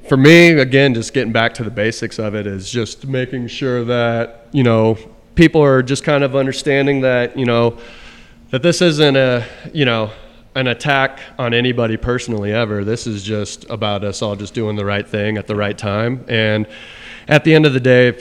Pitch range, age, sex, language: 115-135 Hz, 30-49, male, English